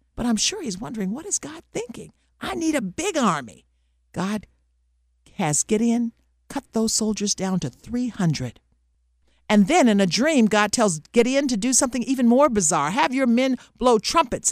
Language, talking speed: English, 175 wpm